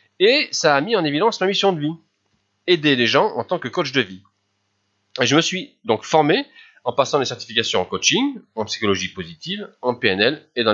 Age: 30-49